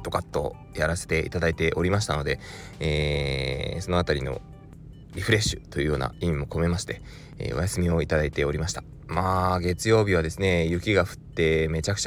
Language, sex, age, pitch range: Japanese, male, 20-39, 80-110 Hz